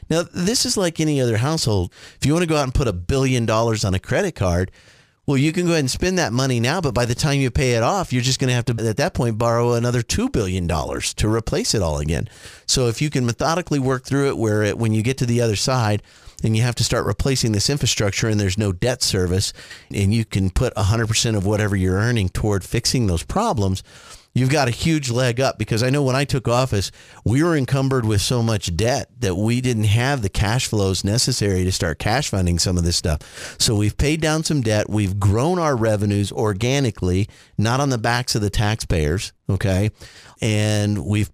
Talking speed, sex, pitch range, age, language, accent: 230 wpm, male, 100-130 Hz, 40-59, English, American